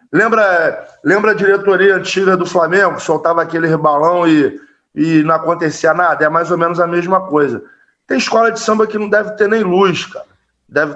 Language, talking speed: Portuguese, 185 wpm